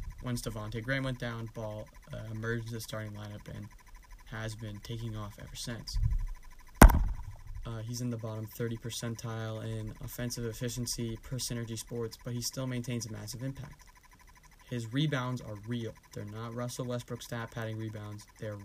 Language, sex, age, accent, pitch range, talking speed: English, male, 20-39, American, 110-120 Hz, 160 wpm